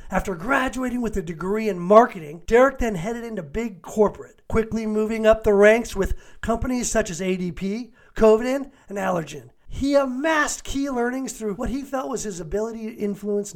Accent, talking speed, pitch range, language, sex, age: American, 175 wpm, 175-225 Hz, English, male, 40-59